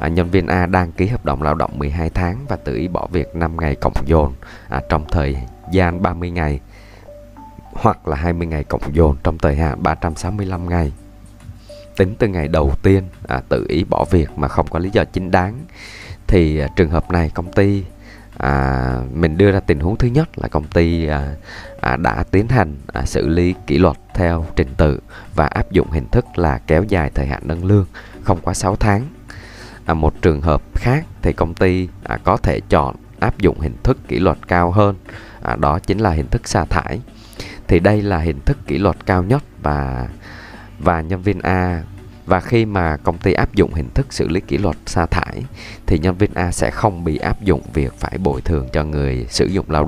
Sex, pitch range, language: male, 75-100 Hz, Vietnamese